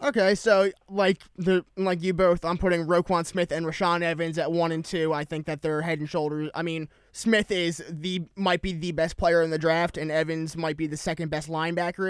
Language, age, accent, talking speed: English, 20-39, American, 225 wpm